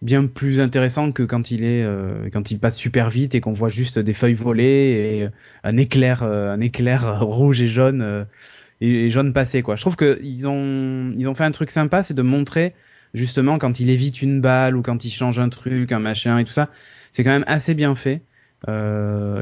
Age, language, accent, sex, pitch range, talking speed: 20-39, French, French, male, 110-140 Hz, 230 wpm